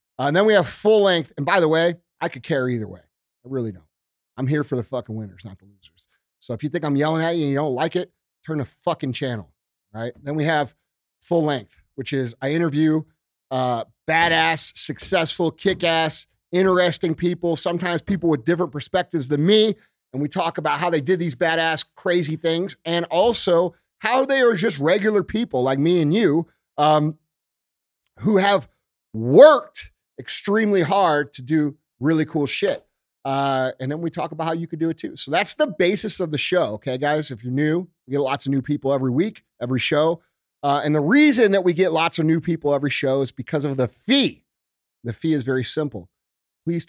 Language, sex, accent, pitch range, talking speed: English, male, American, 130-170 Hz, 205 wpm